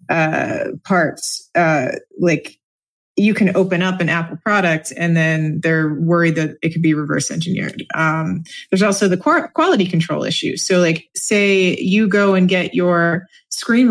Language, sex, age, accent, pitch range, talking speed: English, female, 20-39, American, 165-185 Hz, 160 wpm